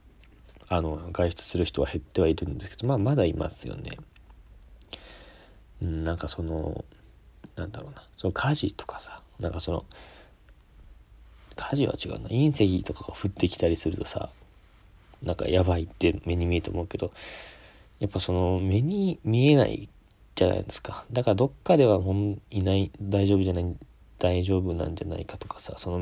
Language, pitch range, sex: Japanese, 85-105 Hz, male